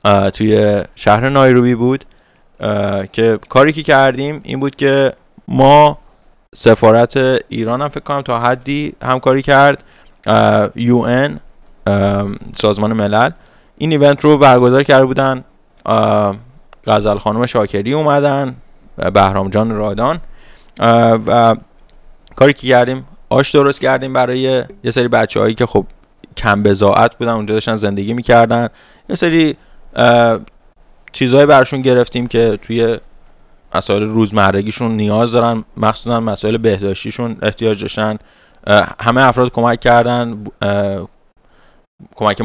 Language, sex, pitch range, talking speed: English, male, 105-130 Hz, 125 wpm